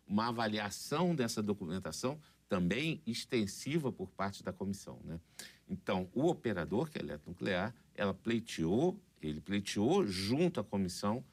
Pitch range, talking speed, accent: 85-120 Hz, 130 wpm, Brazilian